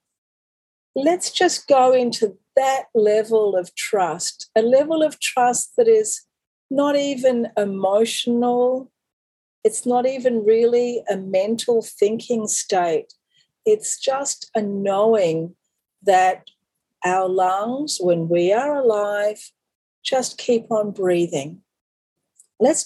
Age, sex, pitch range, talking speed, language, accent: 40-59, female, 185-255 Hz, 110 wpm, English, Australian